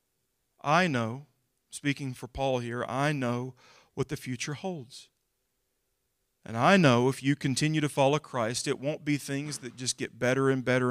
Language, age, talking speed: English, 40-59, 170 wpm